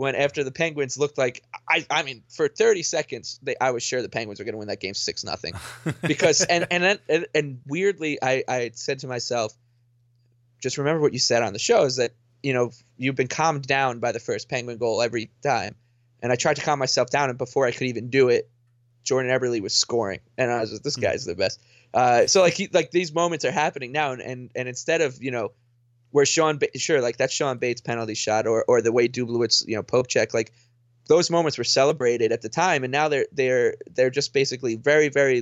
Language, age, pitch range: English, 20-39, 120-140 Hz